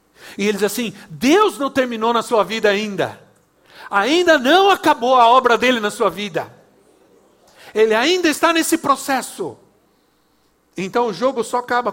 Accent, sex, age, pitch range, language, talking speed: Brazilian, male, 60-79, 195-265 Hz, Portuguese, 150 wpm